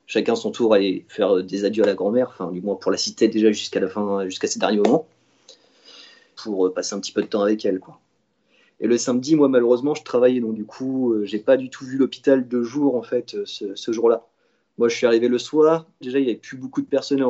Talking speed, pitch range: 245 wpm, 110-130 Hz